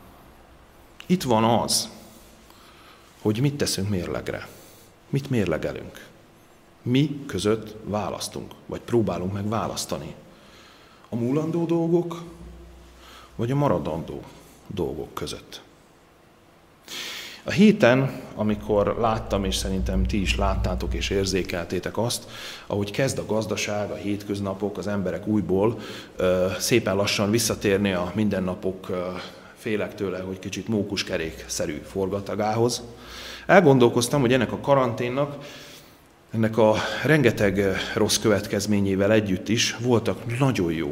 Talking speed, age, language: 105 wpm, 40-59, Hungarian